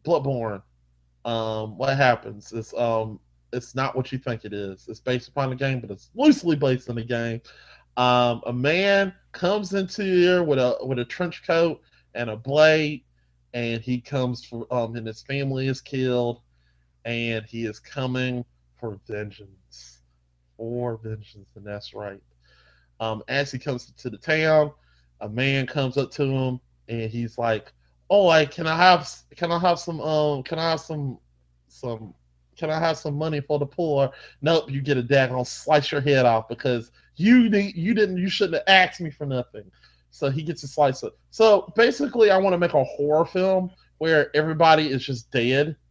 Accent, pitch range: American, 115-155 Hz